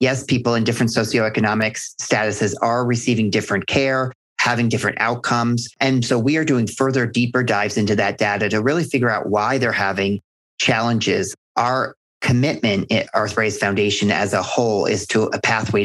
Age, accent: 40-59, American